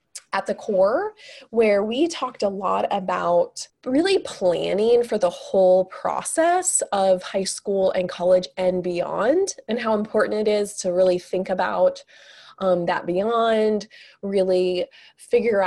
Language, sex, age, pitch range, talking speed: English, female, 20-39, 180-220 Hz, 140 wpm